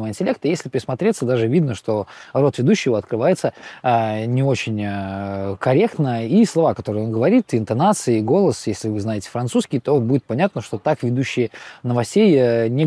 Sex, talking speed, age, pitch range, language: male, 160 wpm, 20-39, 120-160 Hz, Russian